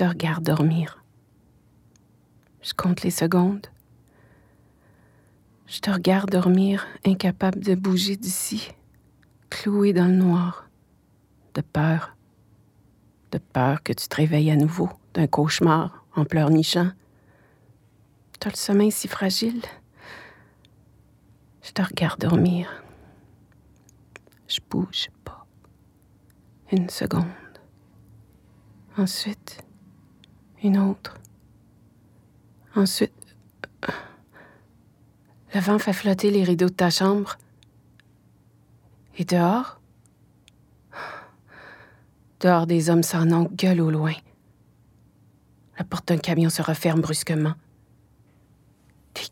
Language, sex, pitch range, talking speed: French, female, 135-190 Hz, 95 wpm